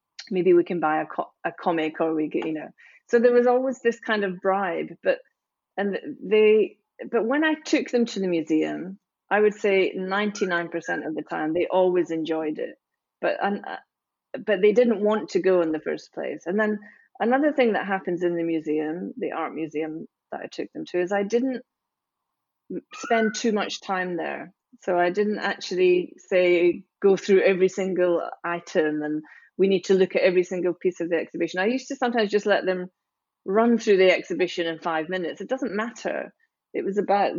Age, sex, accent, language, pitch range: 30-49, female, British, Chinese, 175-225 Hz